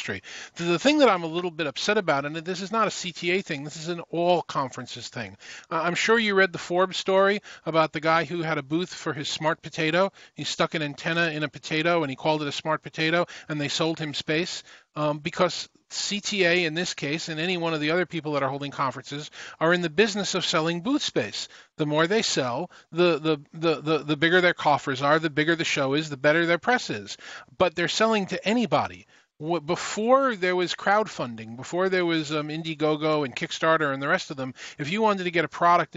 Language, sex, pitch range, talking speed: English, male, 155-200 Hz, 225 wpm